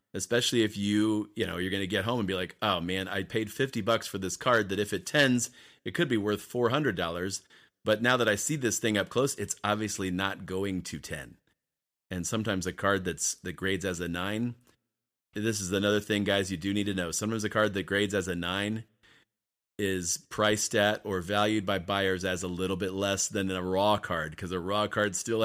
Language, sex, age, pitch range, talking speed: English, male, 30-49, 95-115 Hz, 230 wpm